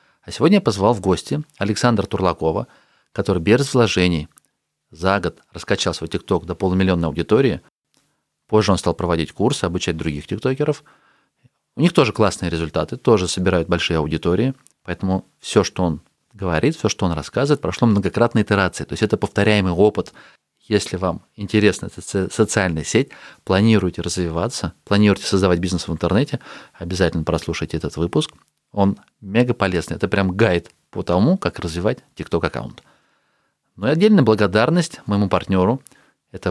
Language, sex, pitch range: Russian, male, 85-105 Hz